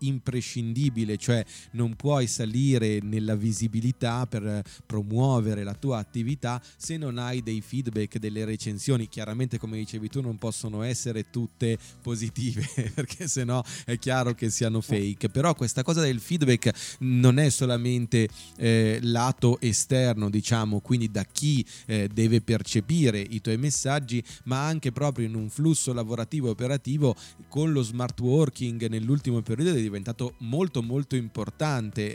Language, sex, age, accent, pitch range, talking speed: Italian, male, 30-49, native, 110-130 Hz, 140 wpm